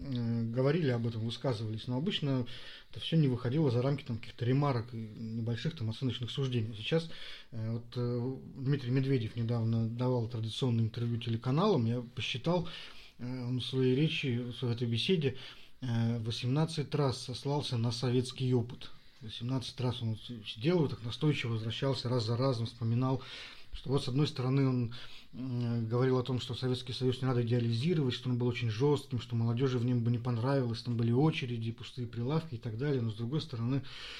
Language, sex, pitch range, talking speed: Russian, male, 120-135 Hz, 160 wpm